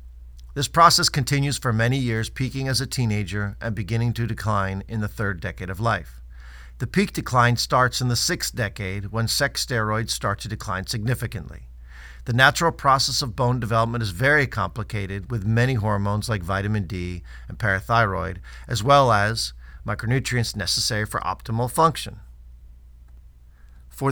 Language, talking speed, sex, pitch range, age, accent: English, 150 wpm, male, 95-125 Hz, 50-69, American